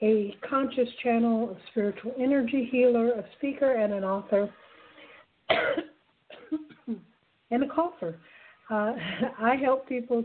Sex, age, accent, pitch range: female, 60-79, American, 195-240 Hz